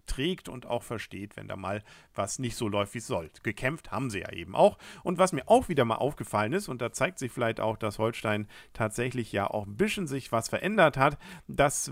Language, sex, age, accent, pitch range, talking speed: German, male, 50-69, German, 105-145 Hz, 230 wpm